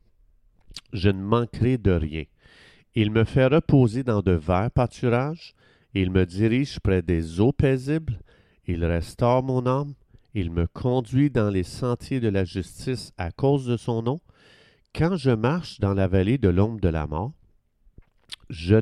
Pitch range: 95-125 Hz